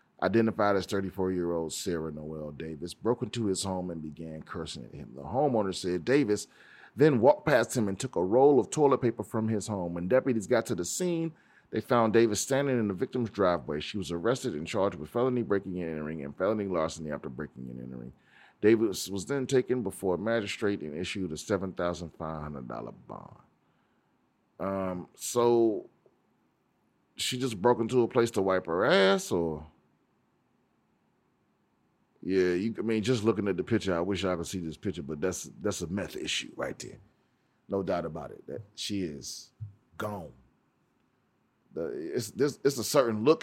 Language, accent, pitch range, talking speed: English, American, 85-115 Hz, 175 wpm